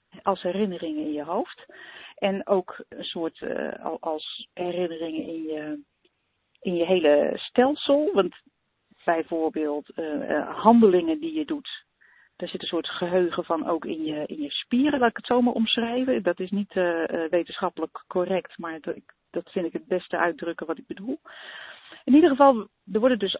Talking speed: 165 wpm